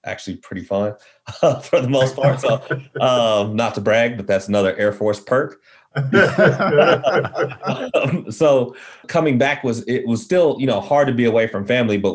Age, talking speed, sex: 30-49, 180 wpm, male